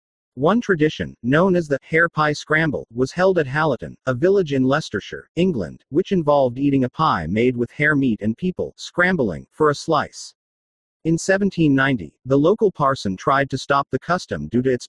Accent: American